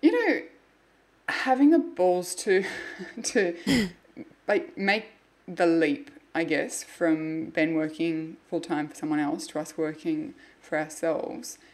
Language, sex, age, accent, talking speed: English, female, 20-39, Australian, 135 wpm